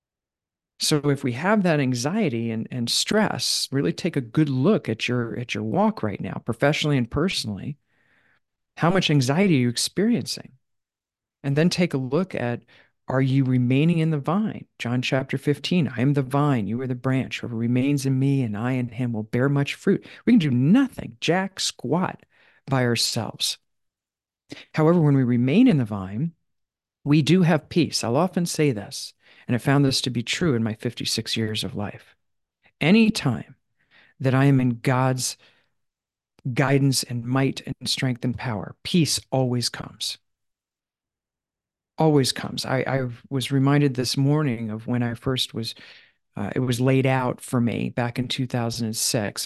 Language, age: English, 50-69